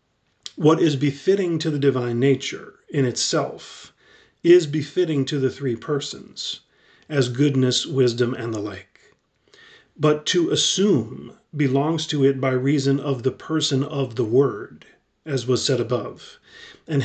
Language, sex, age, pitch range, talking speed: English, male, 40-59, 125-145 Hz, 140 wpm